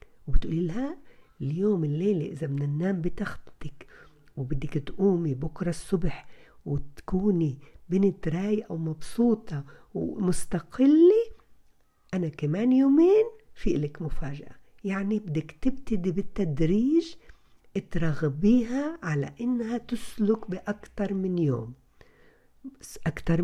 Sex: female